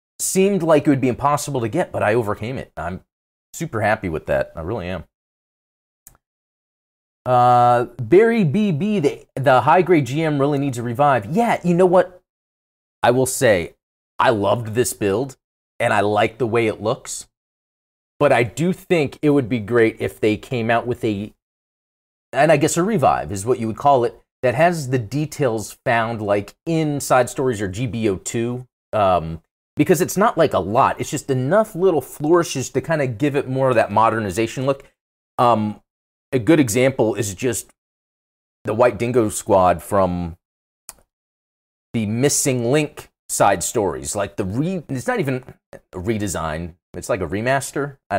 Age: 30-49